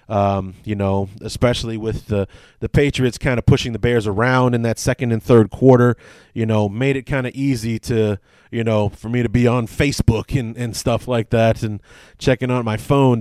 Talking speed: 210 wpm